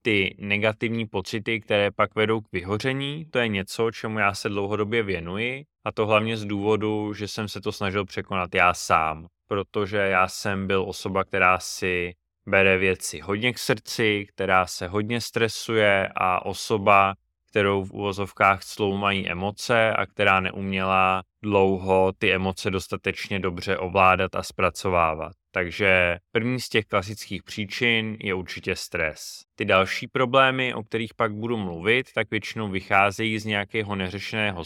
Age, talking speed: 20-39, 150 wpm